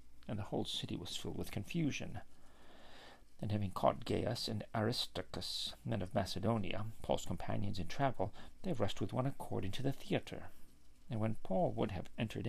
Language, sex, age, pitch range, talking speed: English, male, 50-69, 95-135 Hz, 170 wpm